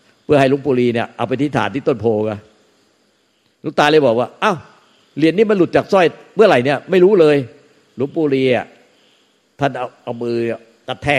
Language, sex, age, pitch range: Thai, male, 50-69, 115-145 Hz